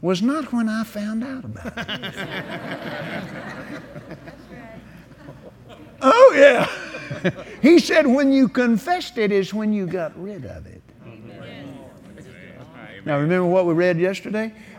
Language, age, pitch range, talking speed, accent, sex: English, 50-69, 150-220 Hz, 120 wpm, American, male